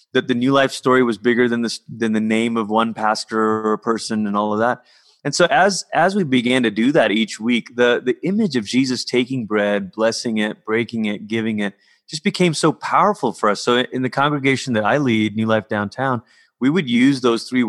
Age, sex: 30-49, male